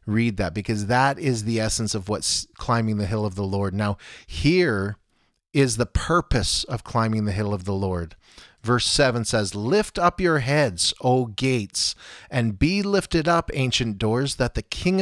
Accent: American